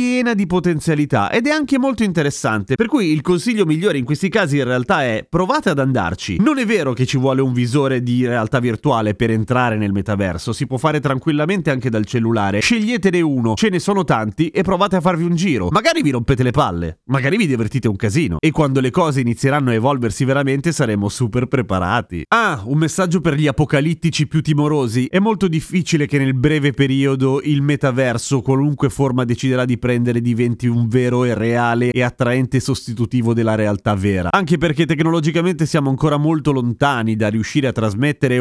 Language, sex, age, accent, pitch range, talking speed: Italian, male, 30-49, native, 125-170 Hz, 190 wpm